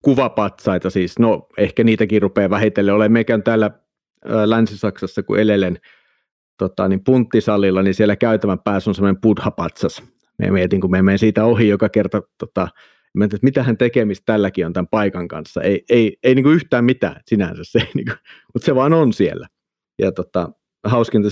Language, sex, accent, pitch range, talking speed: Finnish, male, native, 100-130 Hz, 160 wpm